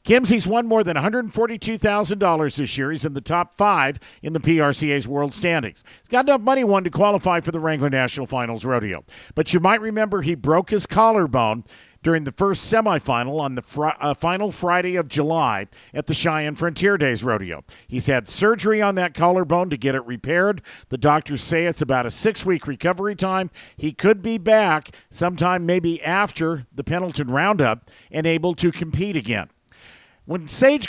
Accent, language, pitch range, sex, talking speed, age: American, English, 145-195 Hz, male, 175 wpm, 50-69